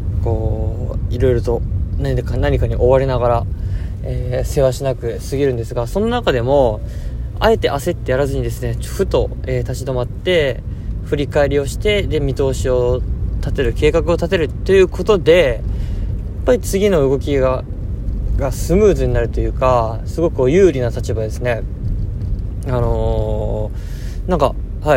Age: 20-39